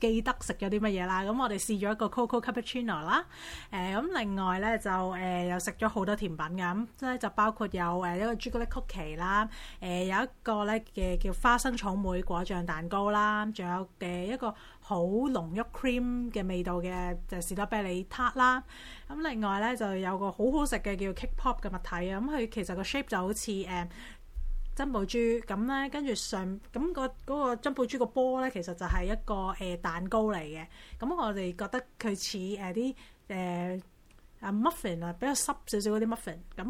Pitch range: 185-235 Hz